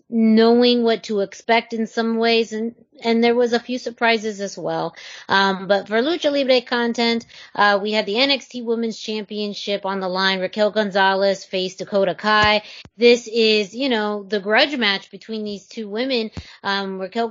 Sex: female